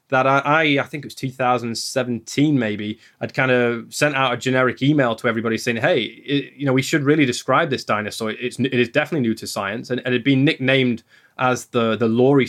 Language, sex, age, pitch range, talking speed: English, male, 20-39, 115-135 Hz, 220 wpm